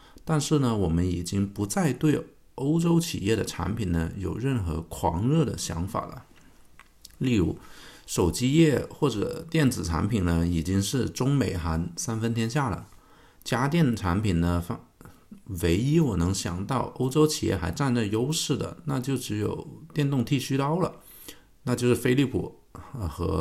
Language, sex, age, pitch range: Chinese, male, 50-69, 90-140 Hz